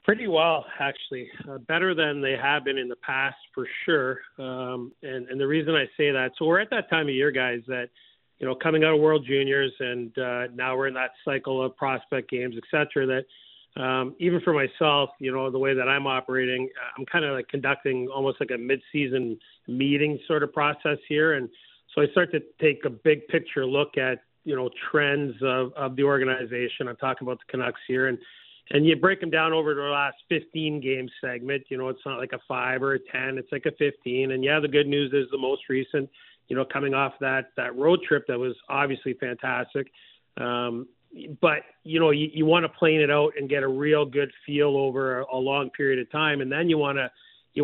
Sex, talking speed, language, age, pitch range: male, 225 wpm, English, 40-59, 130-150 Hz